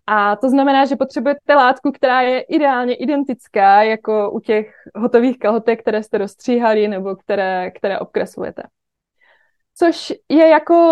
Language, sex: Czech, female